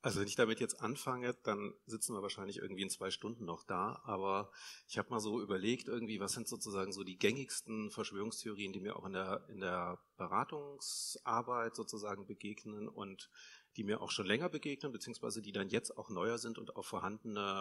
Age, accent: 40-59, German